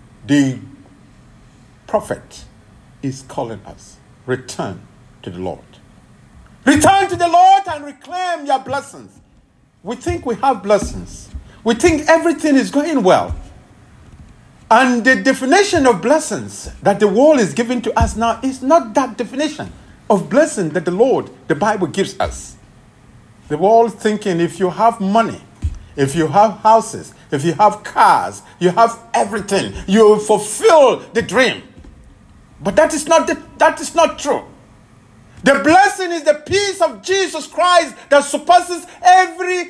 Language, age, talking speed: English, 50-69, 140 wpm